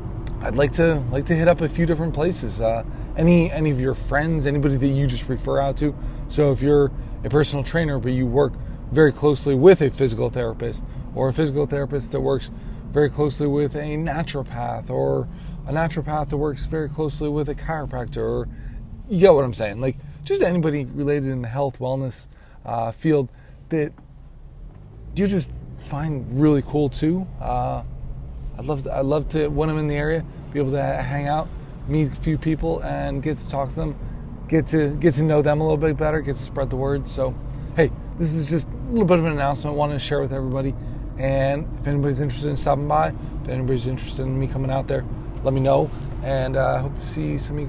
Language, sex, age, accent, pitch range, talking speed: English, male, 20-39, American, 130-150 Hz, 210 wpm